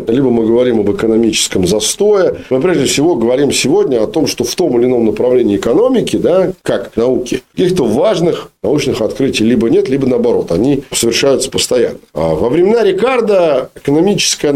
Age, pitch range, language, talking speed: 40-59, 125-195 Hz, Russian, 160 wpm